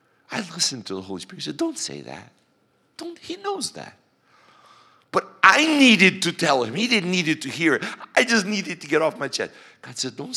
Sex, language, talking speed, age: male, English, 225 wpm, 60-79